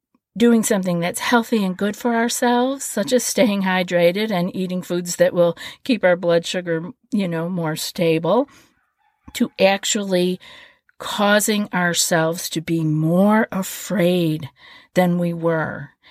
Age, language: 50-69, English